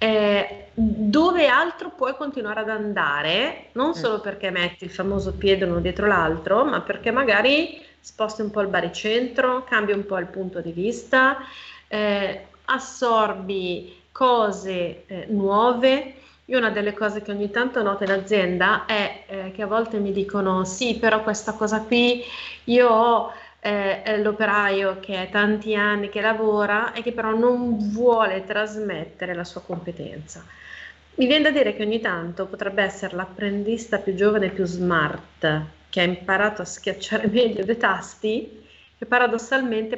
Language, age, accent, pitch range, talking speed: Italian, 30-49, native, 190-225 Hz, 155 wpm